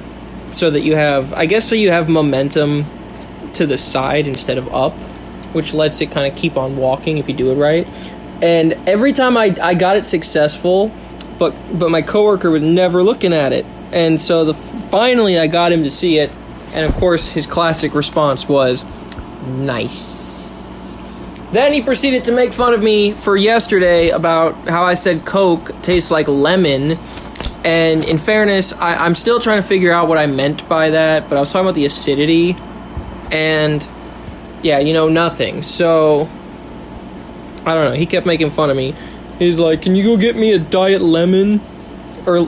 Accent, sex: American, male